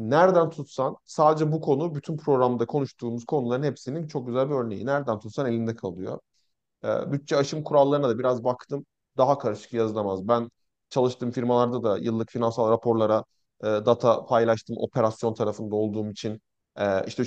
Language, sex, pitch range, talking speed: Turkish, male, 115-155 Hz, 145 wpm